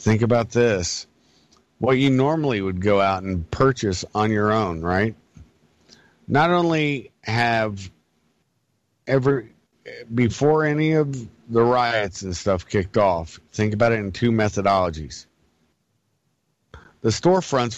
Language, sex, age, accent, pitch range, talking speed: English, male, 50-69, American, 95-125 Hz, 120 wpm